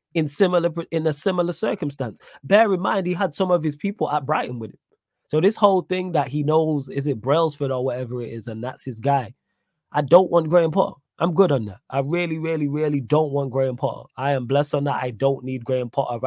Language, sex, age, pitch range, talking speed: English, male, 20-39, 125-155 Hz, 235 wpm